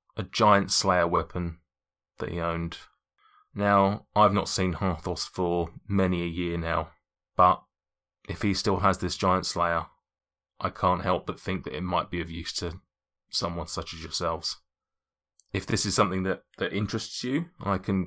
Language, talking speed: English, 170 wpm